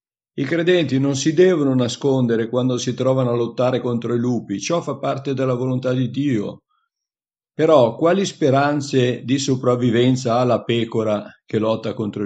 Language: Italian